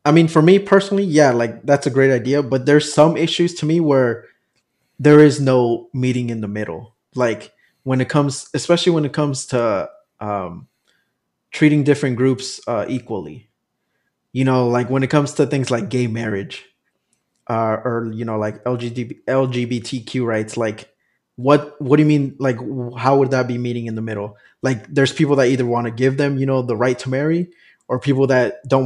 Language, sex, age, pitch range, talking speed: English, male, 20-39, 120-145 Hz, 195 wpm